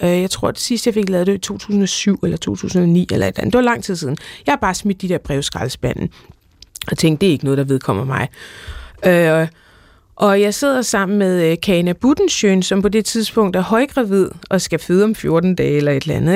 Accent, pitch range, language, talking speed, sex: native, 170-210 Hz, Danish, 230 wpm, female